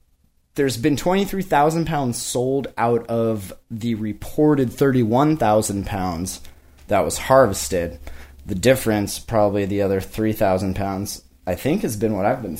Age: 20-39